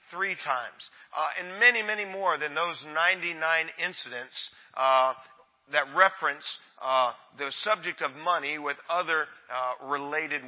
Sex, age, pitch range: male, 40-59, 145-175 Hz